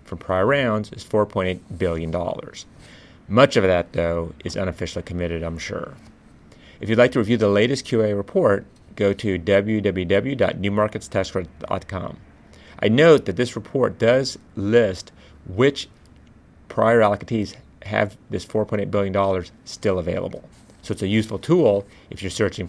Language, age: English, 30-49